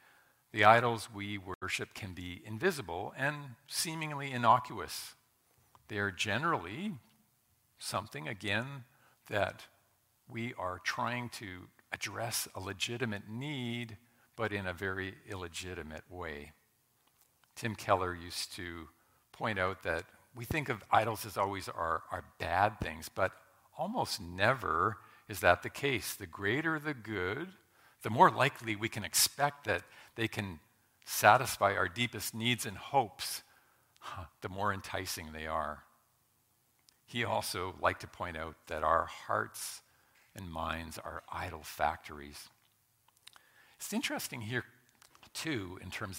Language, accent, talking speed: English, American, 125 wpm